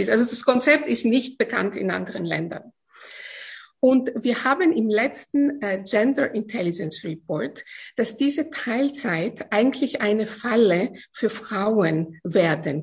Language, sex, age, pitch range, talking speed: German, female, 50-69, 210-270 Hz, 125 wpm